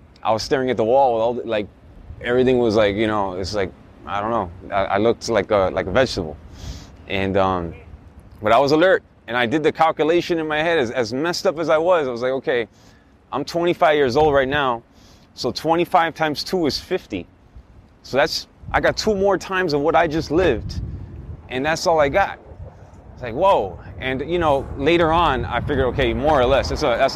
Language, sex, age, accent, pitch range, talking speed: English, male, 20-39, American, 95-150 Hz, 220 wpm